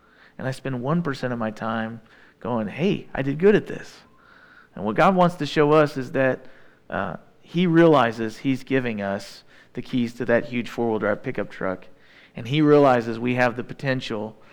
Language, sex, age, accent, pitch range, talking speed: English, male, 40-59, American, 115-140 Hz, 185 wpm